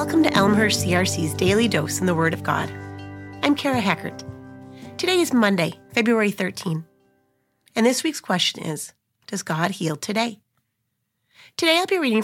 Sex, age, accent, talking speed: female, 30-49, American, 155 wpm